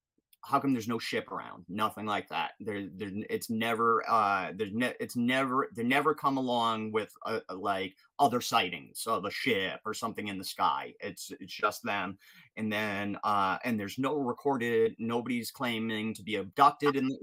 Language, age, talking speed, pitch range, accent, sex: English, 30-49, 185 wpm, 110-155 Hz, American, male